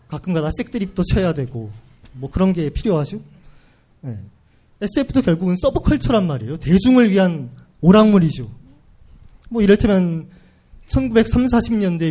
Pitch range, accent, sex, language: 145-200 Hz, native, male, Korean